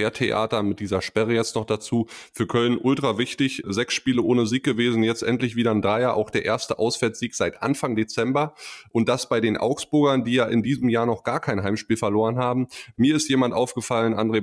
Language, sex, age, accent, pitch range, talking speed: German, male, 20-39, German, 105-120 Hz, 205 wpm